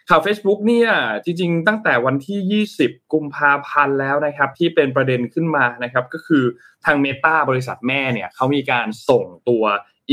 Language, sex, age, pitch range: Thai, male, 20-39, 125-160 Hz